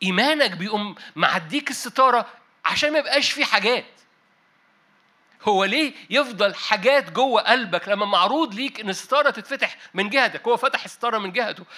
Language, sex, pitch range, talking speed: Arabic, male, 195-260 Hz, 145 wpm